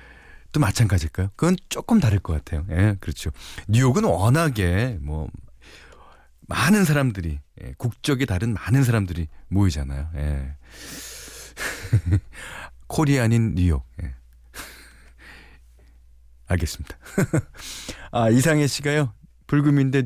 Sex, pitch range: male, 80-130 Hz